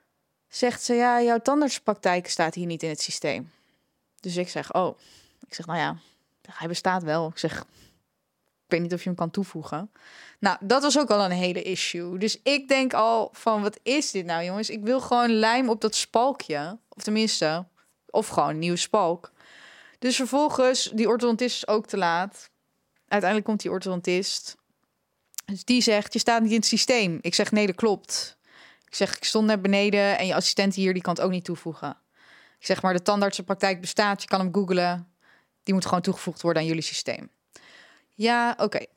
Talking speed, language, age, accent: 195 wpm, Dutch, 20-39, Dutch